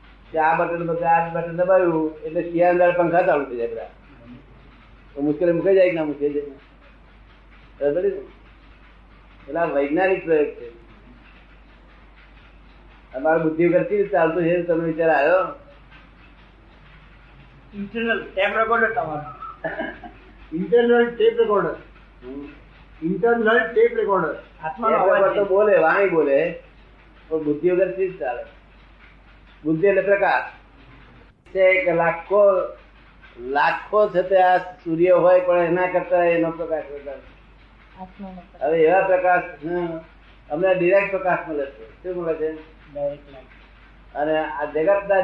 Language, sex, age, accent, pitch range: Gujarati, male, 30-49, native, 155-190 Hz